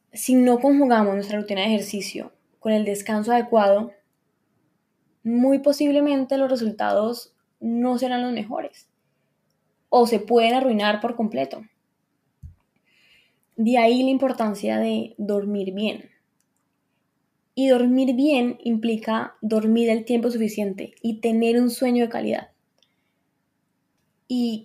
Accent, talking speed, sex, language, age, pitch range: Colombian, 115 wpm, female, Spanish, 10-29, 215-245 Hz